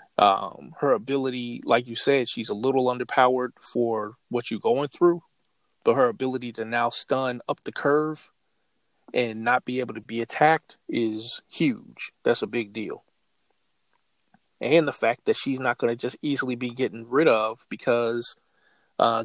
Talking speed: 165 wpm